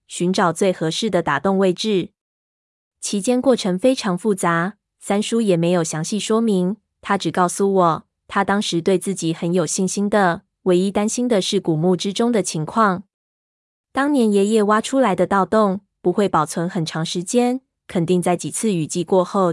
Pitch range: 175-210 Hz